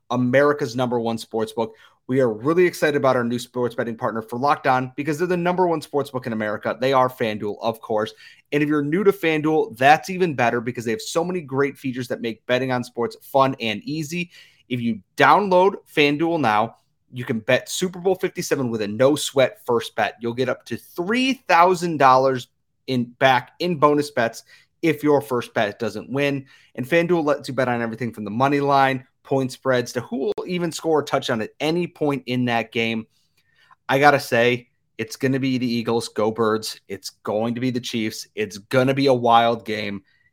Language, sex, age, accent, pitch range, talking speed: English, male, 30-49, American, 115-145 Hz, 200 wpm